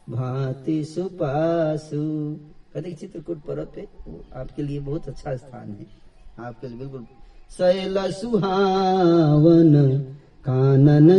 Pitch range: 150-220 Hz